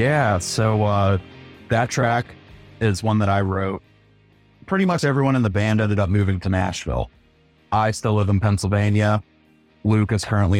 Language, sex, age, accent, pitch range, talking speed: English, male, 30-49, American, 95-115 Hz, 165 wpm